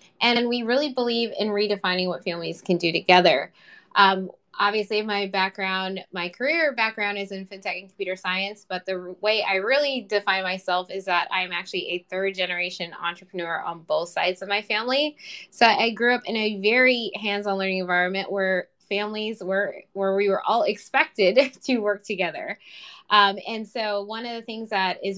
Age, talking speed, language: 10-29, 180 wpm, English